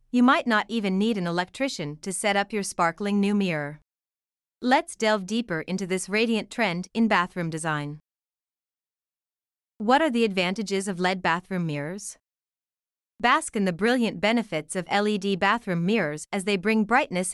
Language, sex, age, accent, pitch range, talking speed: English, female, 30-49, American, 180-225 Hz, 155 wpm